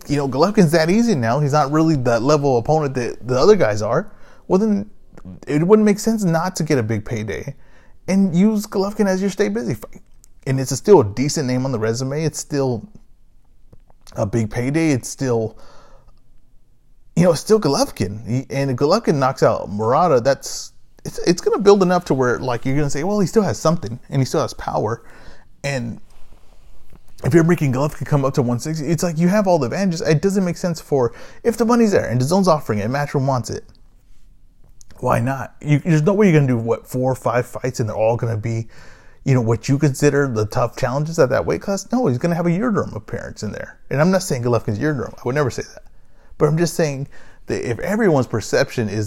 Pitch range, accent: 120-170 Hz, American